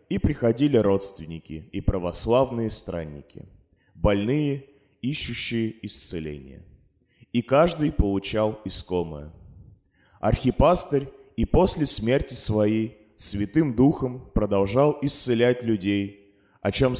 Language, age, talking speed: Russian, 20-39, 90 wpm